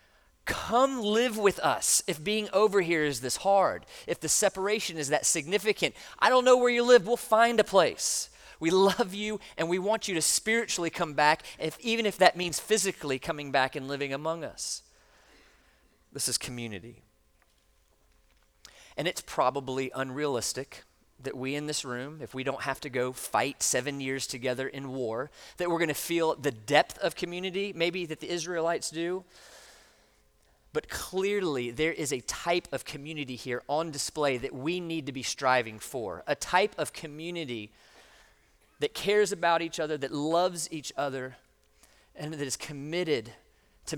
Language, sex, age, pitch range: English, male, 40-59, 135-185 Hz